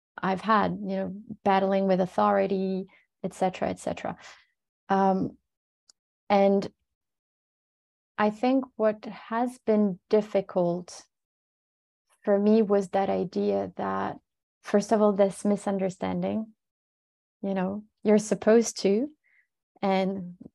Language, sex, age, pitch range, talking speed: English, female, 30-49, 185-210 Hz, 105 wpm